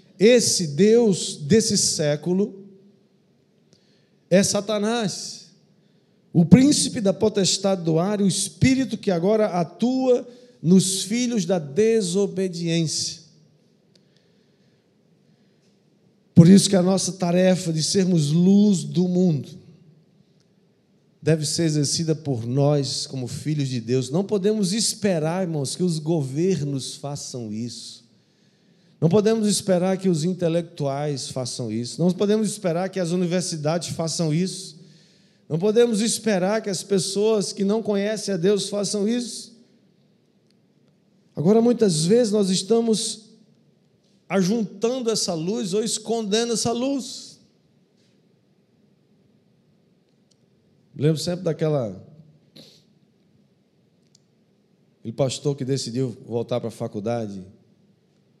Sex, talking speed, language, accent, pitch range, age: male, 105 wpm, Portuguese, Brazilian, 160-205 Hz, 50-69